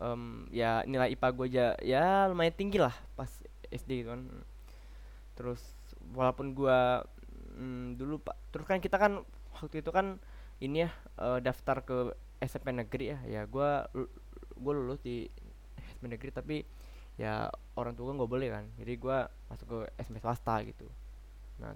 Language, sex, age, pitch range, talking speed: Malay, male, 20-39, 105-135 Hz, 155 wpm